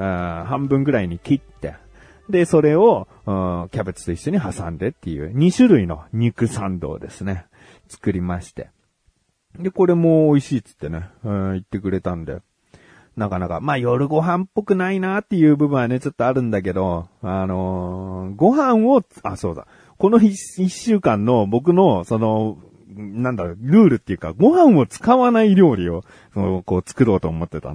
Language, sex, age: Japanese, male, 40-59